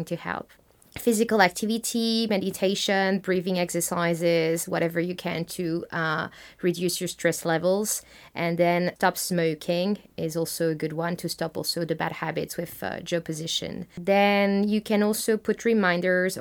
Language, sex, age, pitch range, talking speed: English, female, 20-39, 175-200 Hz, 145 wpm